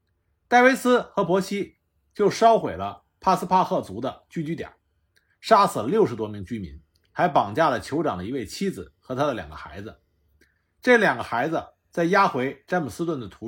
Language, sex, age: Chinese, male, 50-69